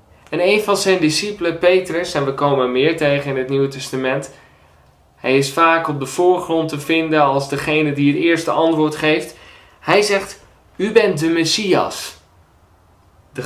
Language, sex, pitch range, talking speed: Dutch, male, 100-165 Hz, 165 wpm